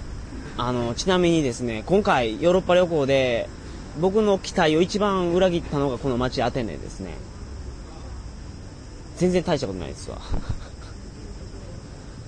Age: 30-49